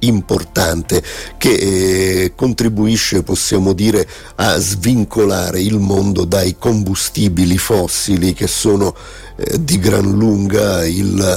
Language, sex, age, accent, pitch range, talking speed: Italian, male, 50-69, native, 95-105 Hz, 105 wpm